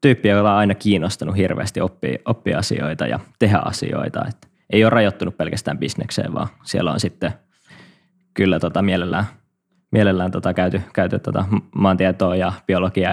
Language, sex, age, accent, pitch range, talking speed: Finnish, male, 20-39, native, 95-110 Hz, 145 wpm